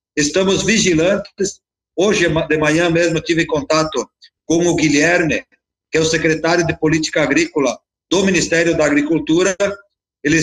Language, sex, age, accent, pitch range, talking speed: Portuguese, male, 50-69, Brazilian, 160-190 Hz, 130 wpm